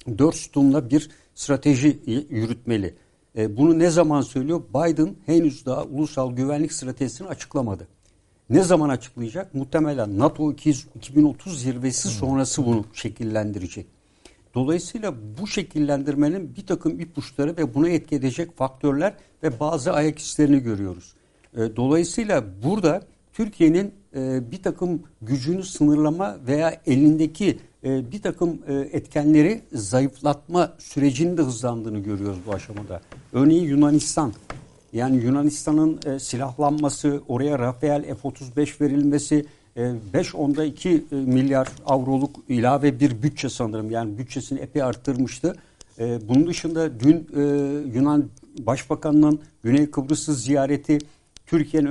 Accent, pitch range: native, 130-155 Hz